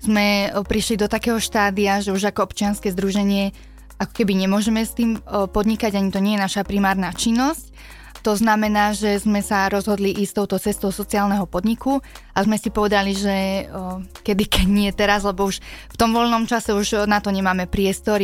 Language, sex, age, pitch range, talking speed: Slovak, female, 20-39, 190-210 Hz, 180 wpm